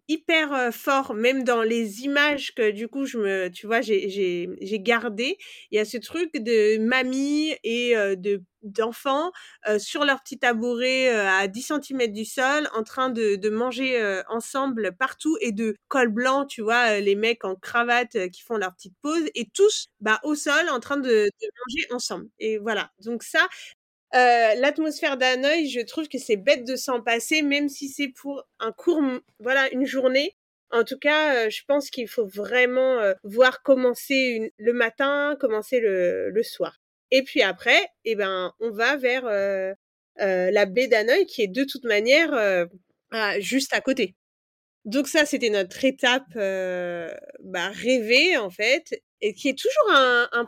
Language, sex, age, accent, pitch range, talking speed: French, female, 30-49, French, 220-280 Hz, 190 wpm